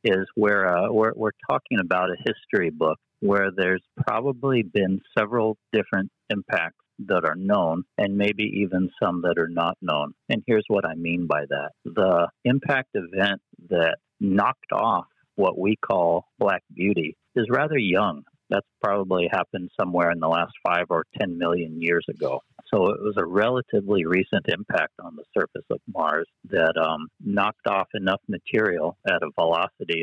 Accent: American